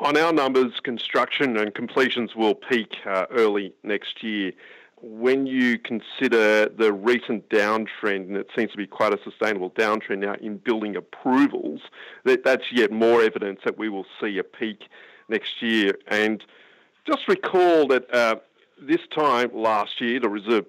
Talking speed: 160 wpm